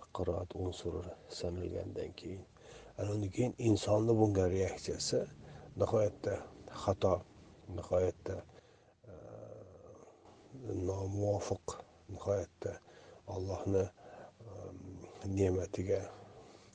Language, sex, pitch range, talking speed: Russian, male, 95-110 Hz, 80 wpm